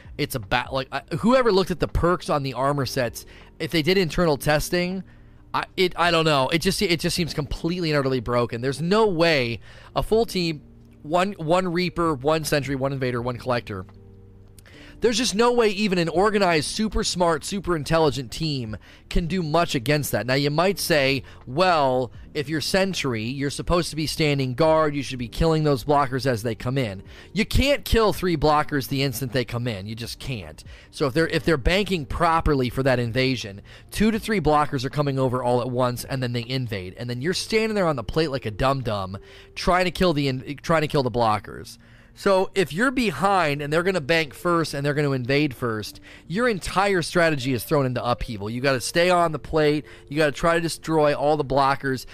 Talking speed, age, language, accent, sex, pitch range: 215 wpm, 30-49, English, American, male, 125-165 Hz